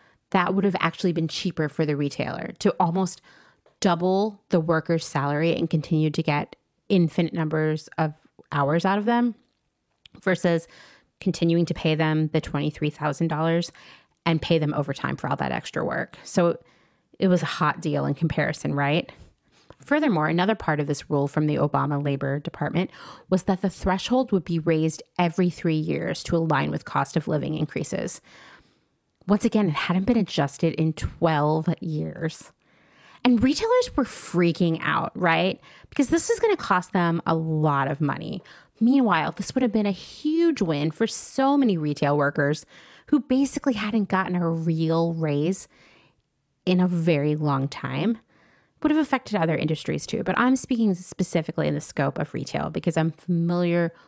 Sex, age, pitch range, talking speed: female, 30-49, 155-195 Hz, 165 wpm